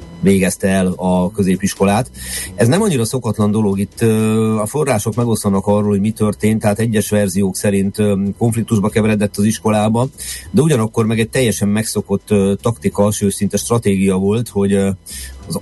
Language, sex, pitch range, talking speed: Hungarian, male, 95-105 Hz, 140 wpm